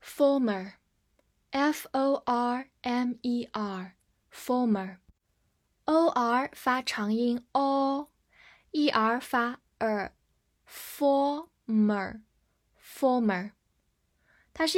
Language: Chinese